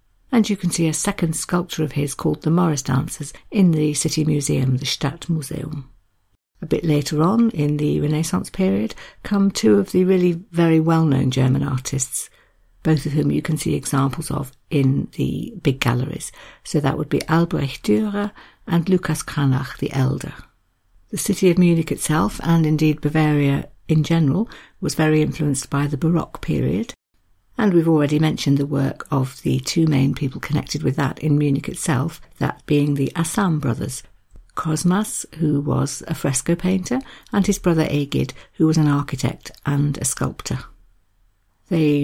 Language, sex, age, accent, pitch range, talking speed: English, female, 60-79, British, 140-170 Hz, 165 wpm